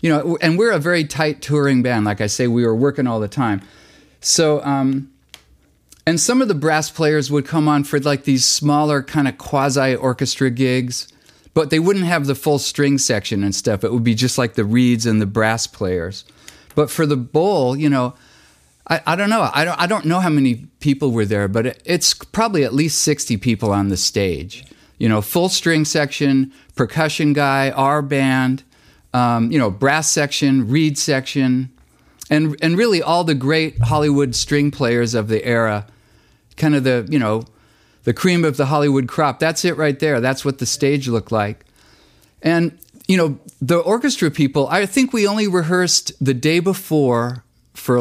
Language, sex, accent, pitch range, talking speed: English, male, American, 120-155 Hz, 190 wpm